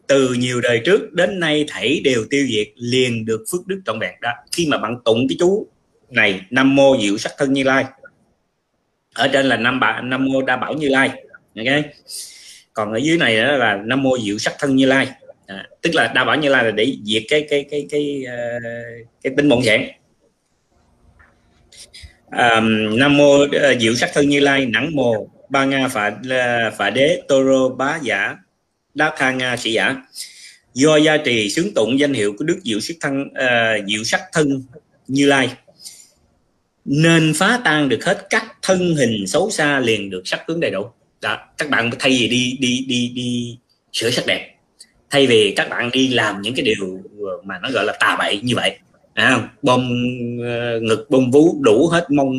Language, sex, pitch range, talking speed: Vietnamese, male, 120-145 Hz, 195 wpm